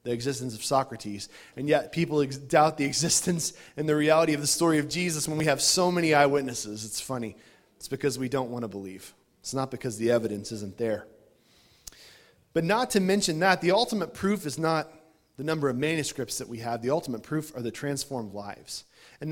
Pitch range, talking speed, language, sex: 130-185 Hz, 200 wpm, English, male